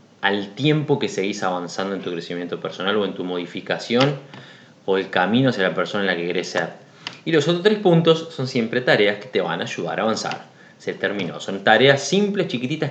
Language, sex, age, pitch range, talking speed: Spanish, male, 20-39, 100-140 Hz, 210 wpm